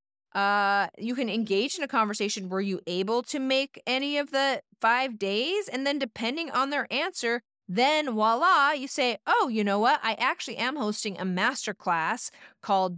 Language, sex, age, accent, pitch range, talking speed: English, female, 30-49, American, 195-245 Hz, 175 wpm